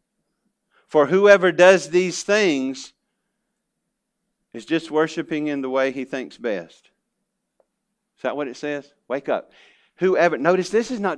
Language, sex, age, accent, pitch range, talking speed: English, male, 50-69, American, 135-205 Hz, 140 wpm